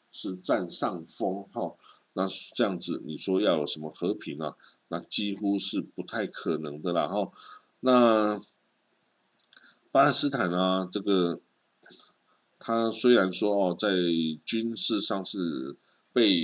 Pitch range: 90-120 Hz